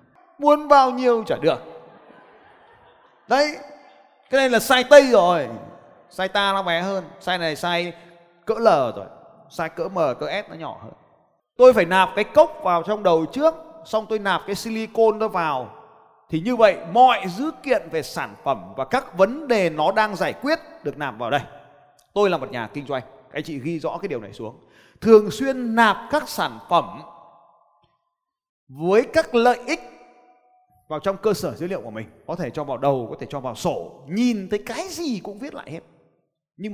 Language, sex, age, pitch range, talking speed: Vietnamese, male, 20-39, 145-225 Hz, 195 wpm